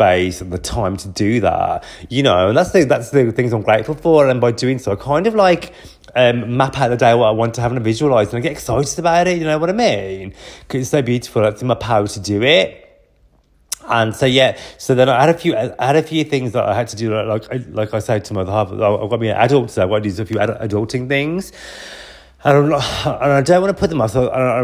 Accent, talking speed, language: British, 260 wpm, English